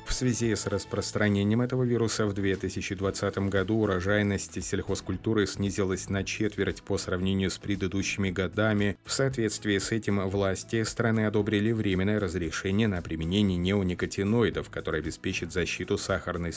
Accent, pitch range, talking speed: native, 95-110 Hz, 125 wpm